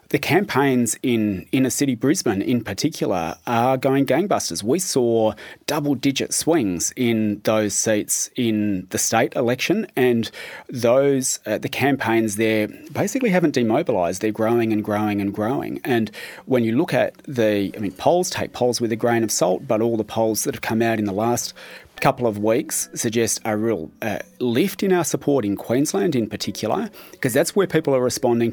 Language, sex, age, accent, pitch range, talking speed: English, male, 30-49, Australian, 105-125 Hz, 180 wpm